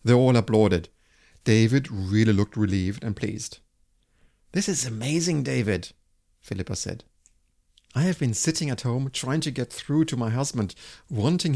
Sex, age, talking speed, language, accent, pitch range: male, 50-69, 150 wpm, English, German, 95-135 Hz